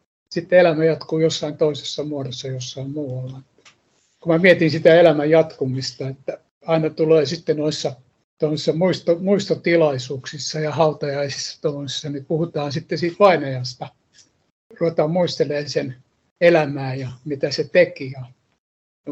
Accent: native